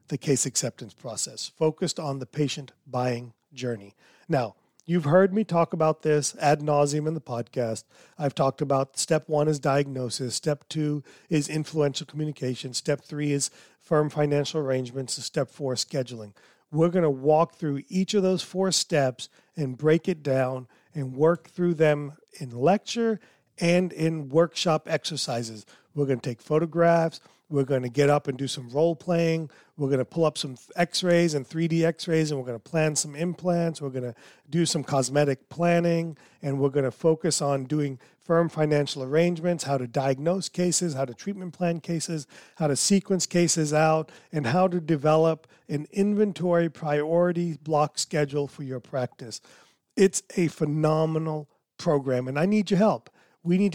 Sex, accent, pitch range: male, American, 140-170 Hz